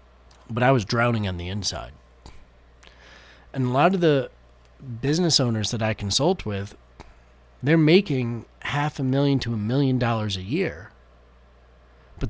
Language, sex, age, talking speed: English, male, 30-49, 145 wpm